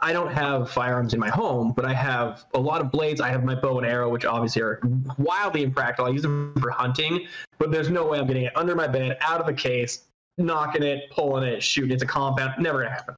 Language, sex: English, male